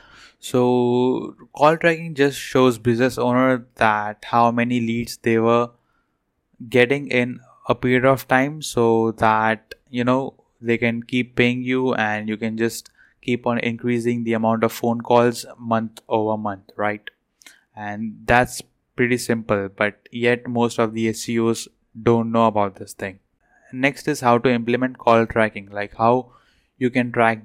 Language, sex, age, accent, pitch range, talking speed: English, male, 10-29, Indian, 115-125 Hz, 155 wpm